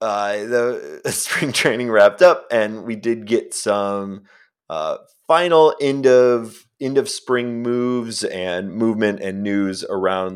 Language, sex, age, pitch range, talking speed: English, male, 30-49, 100-140 Hz, 140 wpm